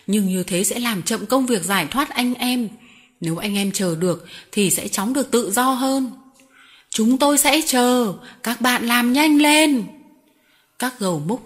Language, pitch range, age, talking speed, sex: Vietnamese, 195-260 Hz, 20-39, 190 wpm, female